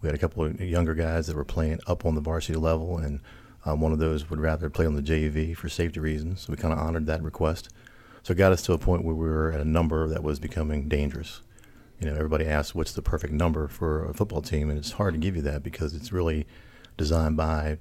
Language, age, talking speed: English, 40-59, 260 wpm